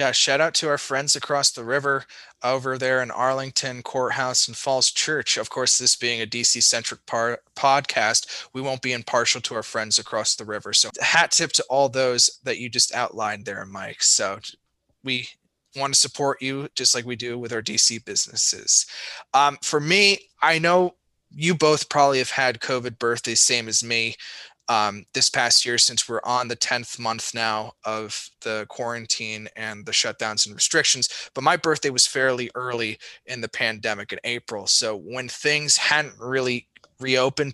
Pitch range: 115-135 Hz